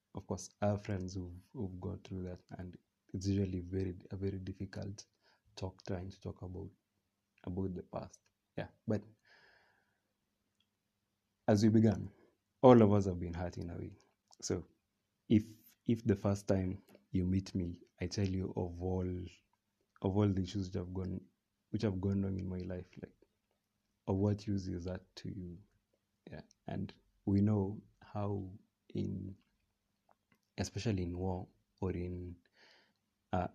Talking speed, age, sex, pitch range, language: 155 wpm, 30-49, male, 90-100 Hz, English